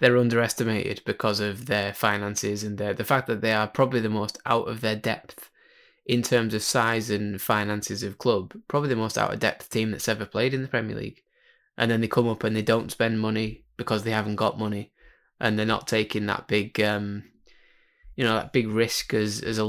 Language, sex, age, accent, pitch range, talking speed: English, male, 10-29, British, 105-120 Hz, 220 wpm